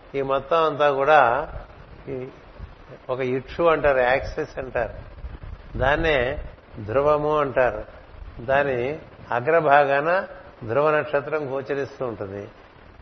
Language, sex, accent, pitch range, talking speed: Telugu, male, native, 105-150 Hz, 80 wpm